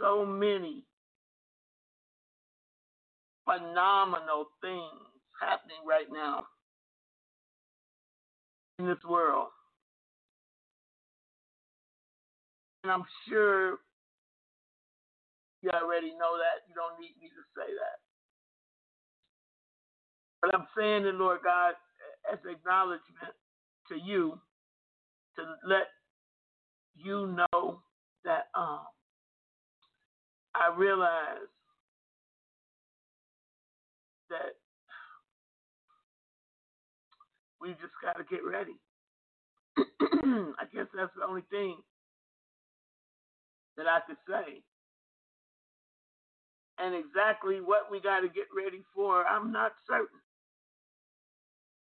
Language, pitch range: English, 175-225 Hz